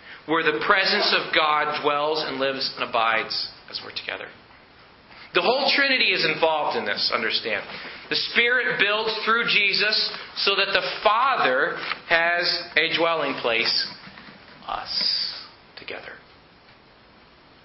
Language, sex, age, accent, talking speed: English, male, 40-59, American, 120 wpm